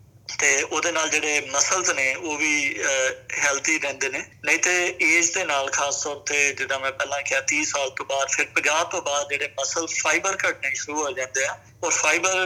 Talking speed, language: 195 wpm, Punjabi